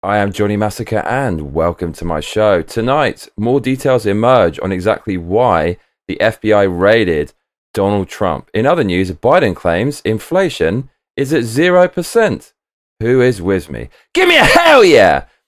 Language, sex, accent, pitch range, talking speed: English, male, British, 95-135 Hz, 155 wpm